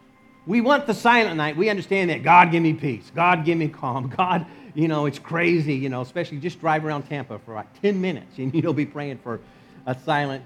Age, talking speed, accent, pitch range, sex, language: 50-69, 225 wpm, American, 140-195 Hz, male, English